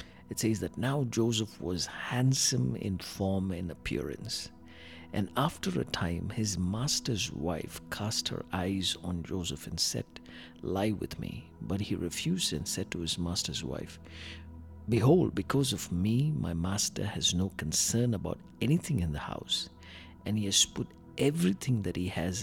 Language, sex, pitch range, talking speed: English, male, 80-110 Hz, 160 wpm